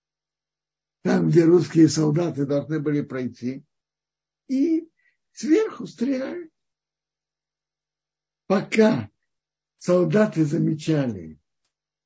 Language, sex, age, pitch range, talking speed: Russian, male, 60-79, 155-225 Hz, 65 wpm